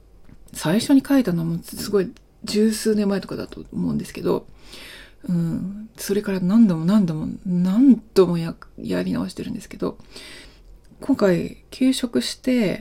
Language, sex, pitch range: Japanese, female, 180-220 Hz